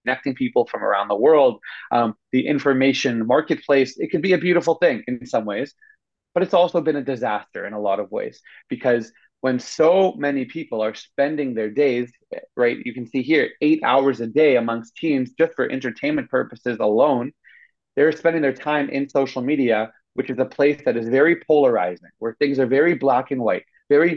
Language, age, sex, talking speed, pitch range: English, 30-49, male, 195 wpm, 125-170 Hz